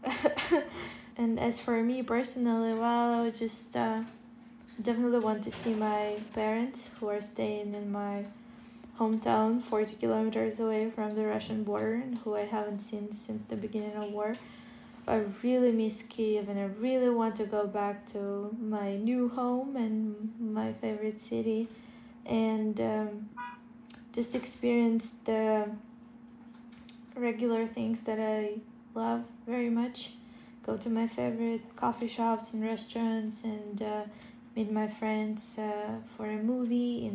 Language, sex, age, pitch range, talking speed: English, female, 20-39, 215-235 Hz, 140 wpm